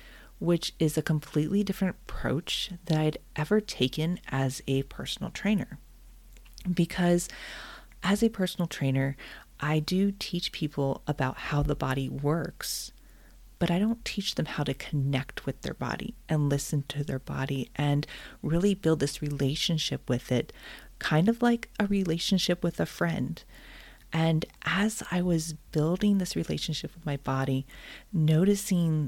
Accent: American